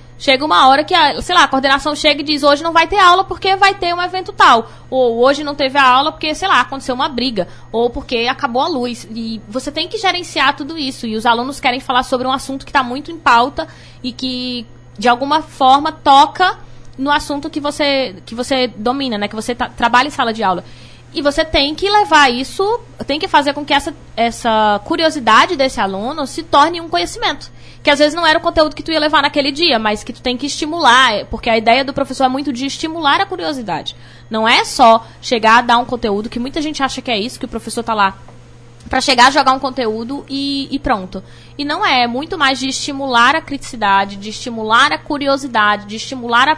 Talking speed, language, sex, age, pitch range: 230 wpm, Portuguese, female, 20-39, 225-290 Hz